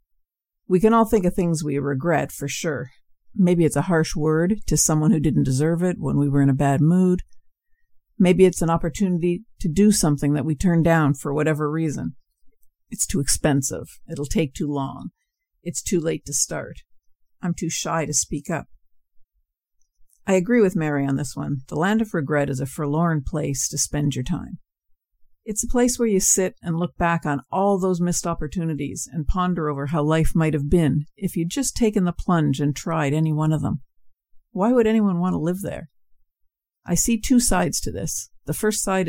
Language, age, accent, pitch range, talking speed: English, 50-69, American, 145-185 Hz, 200 wpm